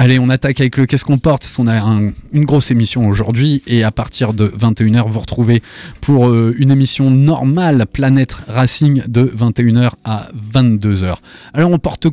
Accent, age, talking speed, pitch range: French, 20-39, 205 wpm, 115-150 Hz